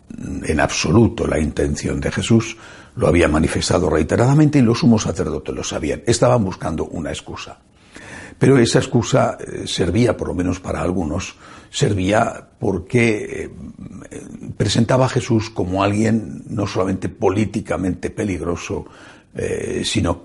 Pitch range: 90-115 Hz